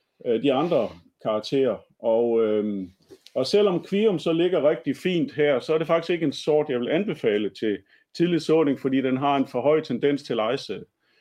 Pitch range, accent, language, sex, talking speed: 115-165 Hz, native, Danish, male, 180 wpm